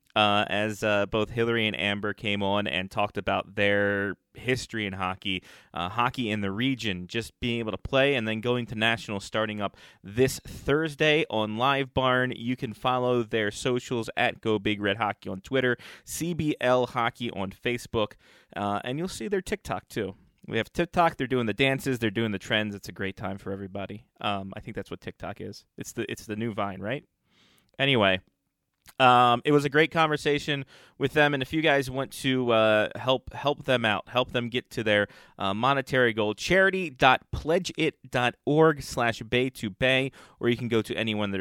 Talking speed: 190 wpm